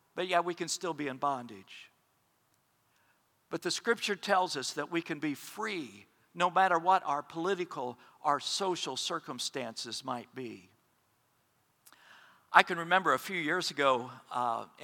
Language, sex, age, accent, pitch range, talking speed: English, male, 50-69, American, 145-185 Hz, 145 wpm